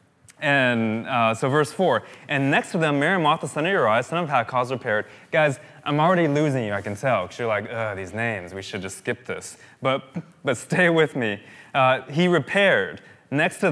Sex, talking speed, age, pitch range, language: male, 205 wpm, 20-39, 120-160 Hz, English